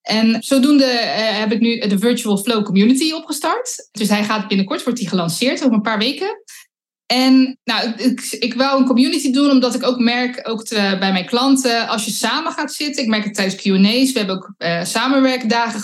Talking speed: 210 wpm